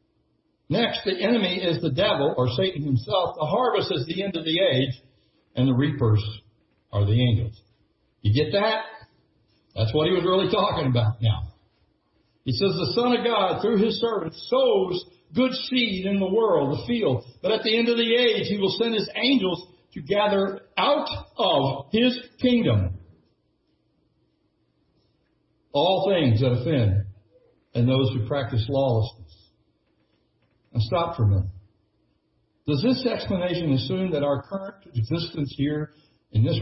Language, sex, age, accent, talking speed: English, male, 60-79, American, 155 wpm